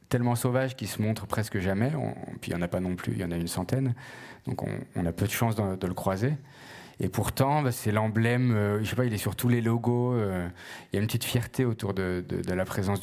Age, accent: 30-49, French